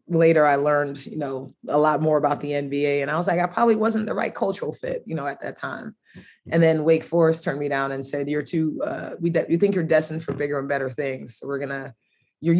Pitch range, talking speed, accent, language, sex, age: 145-170 Hz, 255 wpm, American, English, female, 30-49